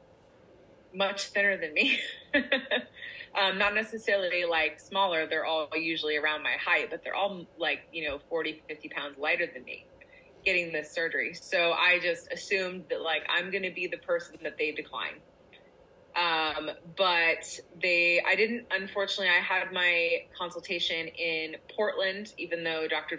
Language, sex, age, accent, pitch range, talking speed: English, female, 20-39, American, 165-195 Hz, 155 wpm